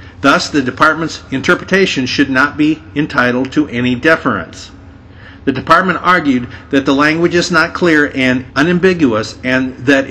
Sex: male